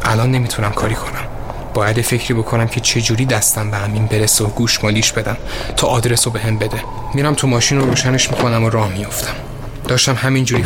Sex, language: male, Persian